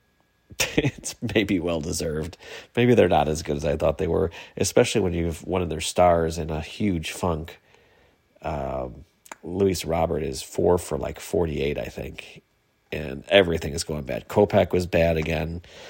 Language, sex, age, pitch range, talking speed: English, male, 40-59, 80-100 Hz, 165 wpm